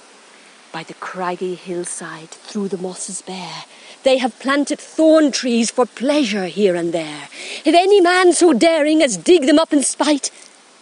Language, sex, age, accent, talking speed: English, female, 40-59, British, 155 wpm